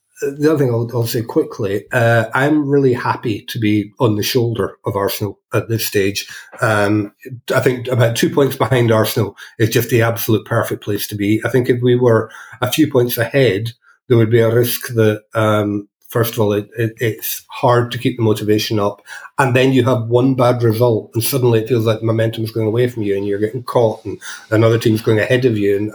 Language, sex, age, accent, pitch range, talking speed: English, male, 30-49, British, 110-125 Hz, 220 wpm